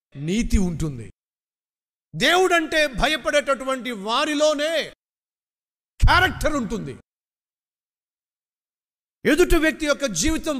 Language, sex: Telugu, male